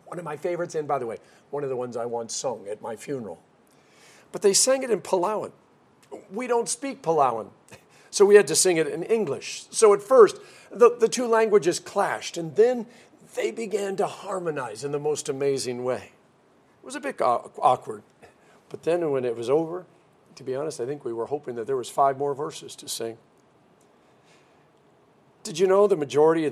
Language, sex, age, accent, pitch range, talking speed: English, male, 50-69, American, 135-225 Hz, 200 wpm